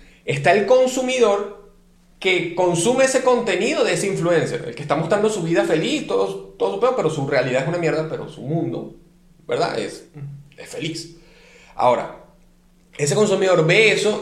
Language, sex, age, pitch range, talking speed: Spanish, male, 30-49, 155-205 Hz, 160 wpm